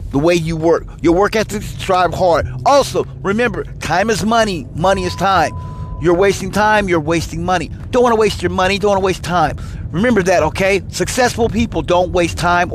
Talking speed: 200 wpm